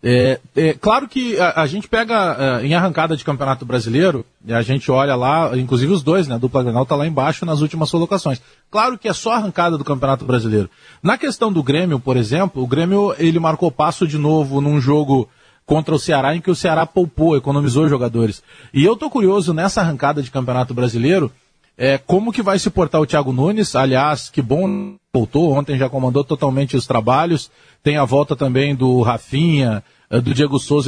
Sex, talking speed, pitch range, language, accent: male, 200 wpm, 135-180 Hz, Portuguese, Brazilian